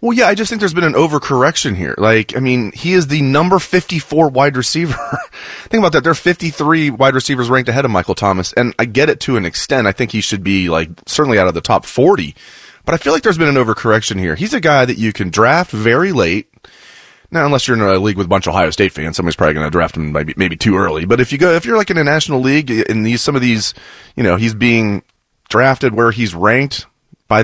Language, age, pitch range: English, 30-49, 105-140 Hz